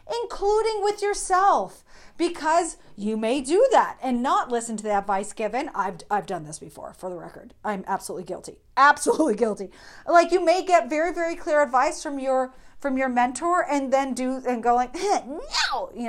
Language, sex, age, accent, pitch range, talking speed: English, female, 40-59, American, 230-325 Hz, 185 wpm